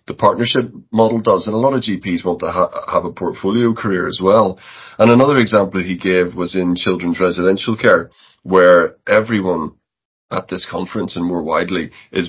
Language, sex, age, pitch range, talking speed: English, male, 30-49, 90-110 Hz, 175 wpm